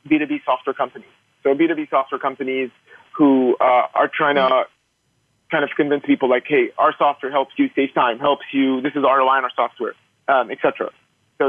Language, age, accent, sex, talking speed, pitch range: English, 30-49, American, male, 185 wpm, 125-155 Hz